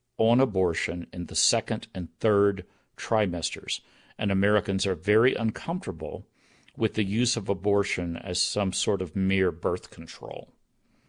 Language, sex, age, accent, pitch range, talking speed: English, male, 50-69, American, 95-125 Hz, 135 wpm